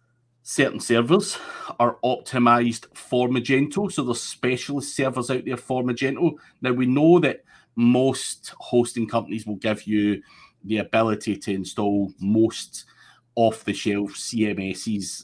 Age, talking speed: 30-49, 120 wpm